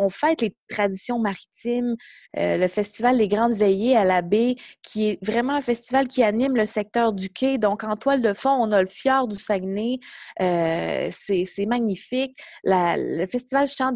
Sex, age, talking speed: female, 20-39, 190 wpm